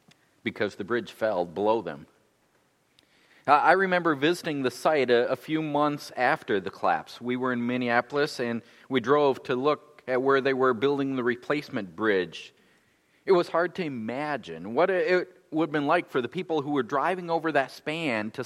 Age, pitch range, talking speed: 50-69, 125-160 Hz, 180 wpm